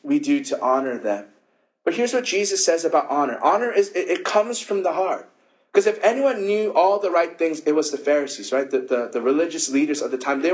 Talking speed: 240 wpm